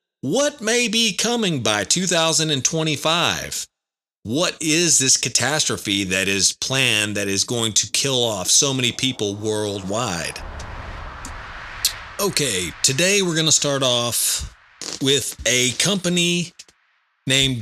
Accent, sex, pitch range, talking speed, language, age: American, male, 105-145 Hz, 115 wpm, English, 40-59